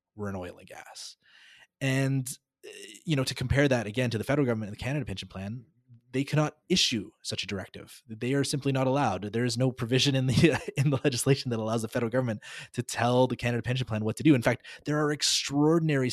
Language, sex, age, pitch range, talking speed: English, male, 20-39, 110-140 Hz, 220 wpm